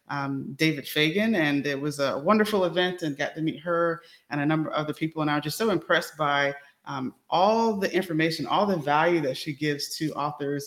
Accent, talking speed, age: American, 215 wpm, 20-39